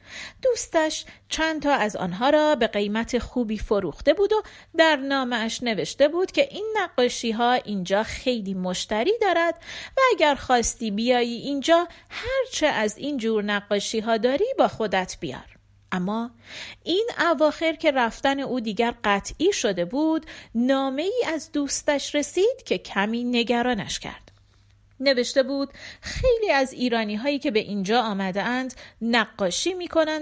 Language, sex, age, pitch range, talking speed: Persian, female, 40-59, 220-325 Hz, 130 wpm